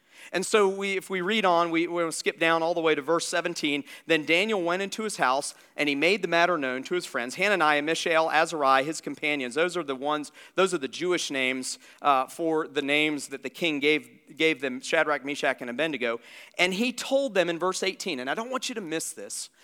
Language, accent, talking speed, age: English, American, 230 wpm, 40-59